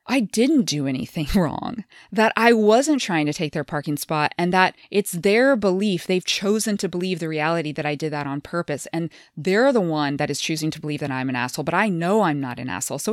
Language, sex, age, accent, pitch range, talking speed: English, female, 20-39, American, 155-210 Hz, 240 wpm